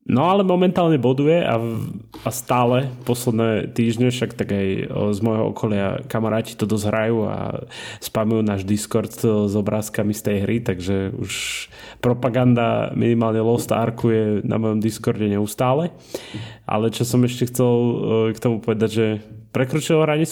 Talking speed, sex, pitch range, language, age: 150 wpm, male, 110-125 Hz, Slovak, 20-39